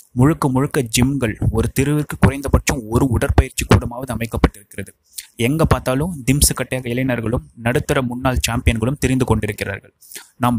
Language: Tamil